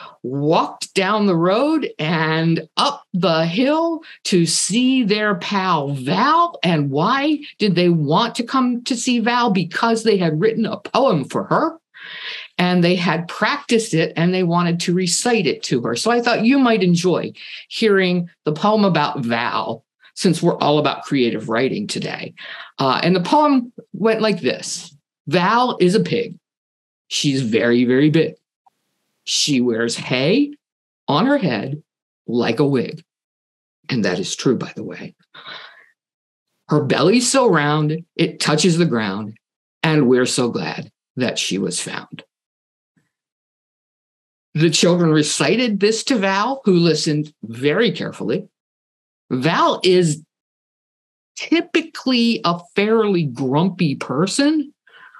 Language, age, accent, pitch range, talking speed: English, 50-69, American, 160-230 Hz, 135 wpm